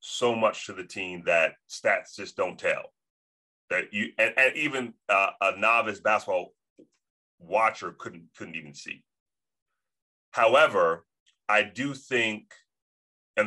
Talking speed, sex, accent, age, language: 130 wpm, male, American, 30-49, English